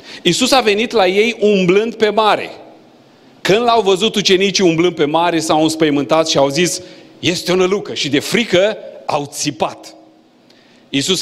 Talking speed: 155 wpm